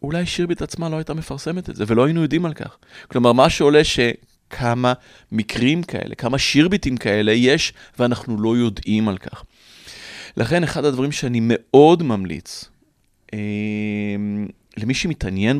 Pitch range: 105-140 Hz